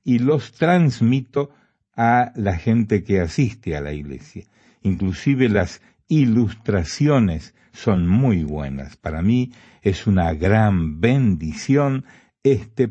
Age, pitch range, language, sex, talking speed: 60-79, 90-120 Hz, Spanish, male, 110 wpm